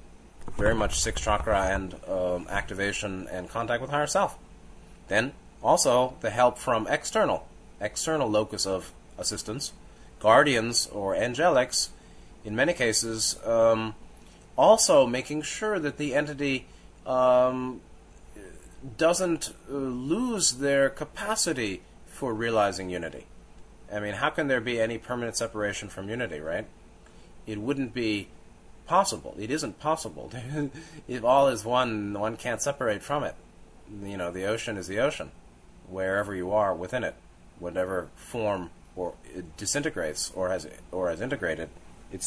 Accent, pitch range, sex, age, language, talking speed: American, 90-130 Hz, male, 30-49, English, 135 wpm